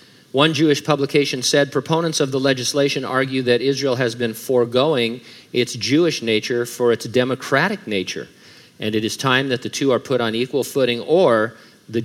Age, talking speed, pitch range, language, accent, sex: 50-69, 175 wpm, 115-135 Hz, English, American, male